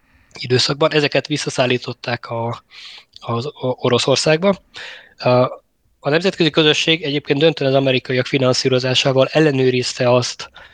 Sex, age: male, 20-39